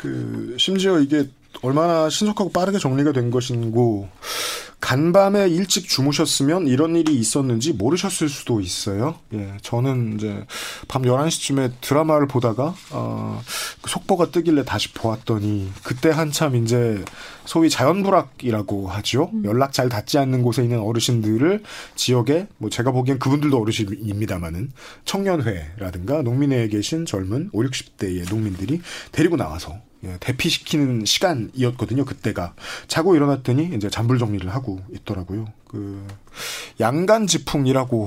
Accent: native